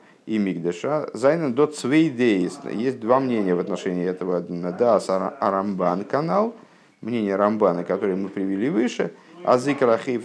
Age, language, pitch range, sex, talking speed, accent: 50-69, Russian, 95-140 Hz, male, 135 wpm, native